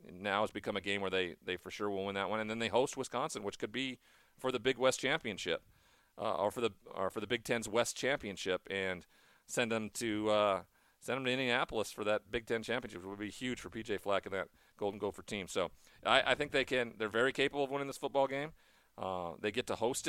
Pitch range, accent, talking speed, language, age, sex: 95-120 Hz, American, 250 wpm, English, 40-59, male